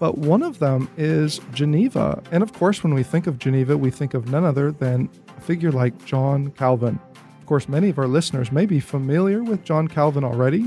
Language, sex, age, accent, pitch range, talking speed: English, male, 40-59, American, 135-195 Hz, 215 wpm